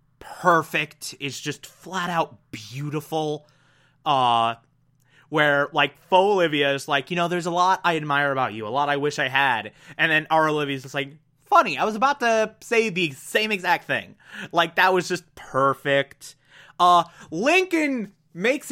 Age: 20-39